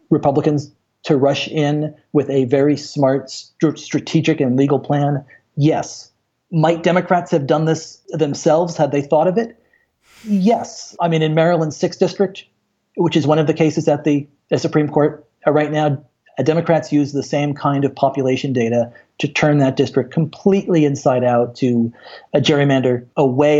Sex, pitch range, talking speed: male, 125-155 Hz, 165 wpm